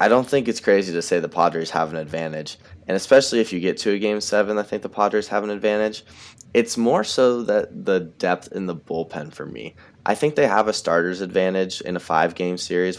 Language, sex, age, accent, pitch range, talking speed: English, male, 10-29, American, 85-110 Hz, 230 wpm